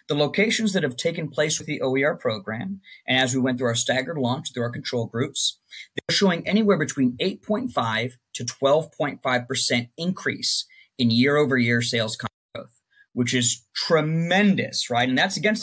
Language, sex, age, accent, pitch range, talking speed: English, male, 30-49, American, 120-160 Hz, 155 wpm